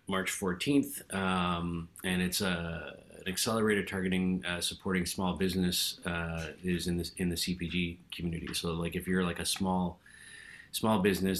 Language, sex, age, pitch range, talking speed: English, male, 30-49, 85-95 Hz, 160 wpm